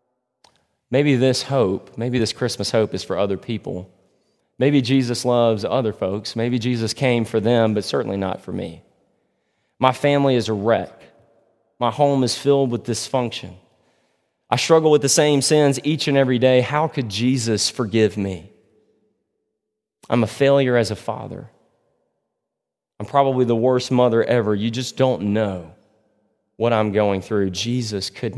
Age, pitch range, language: 30-49, 105-140 Hz, English